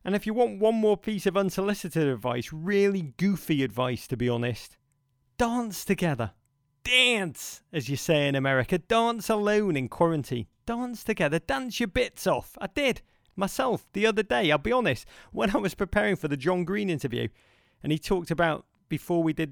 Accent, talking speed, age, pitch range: British, 180 wpm, 30-49, 125-185 Hz